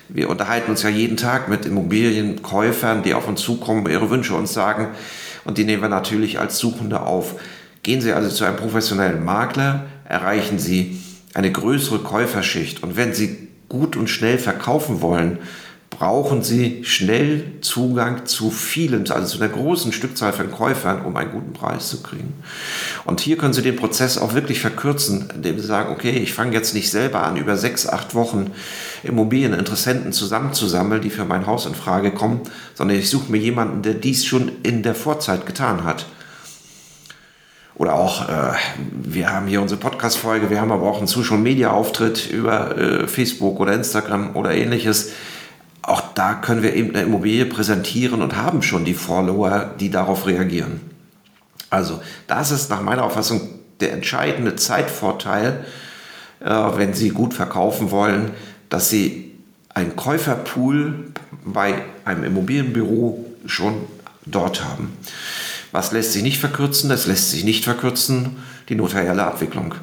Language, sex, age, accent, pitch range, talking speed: German, male, 40-59, German, 100-125 Hz, 155 wpm